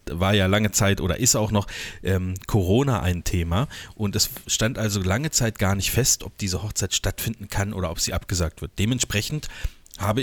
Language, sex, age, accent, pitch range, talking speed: German, male, 30-49, German, 100-120 Hz, 195 wpm